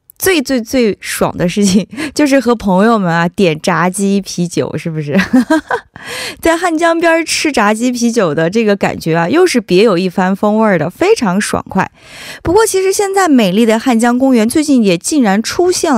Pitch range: 185-290 Hz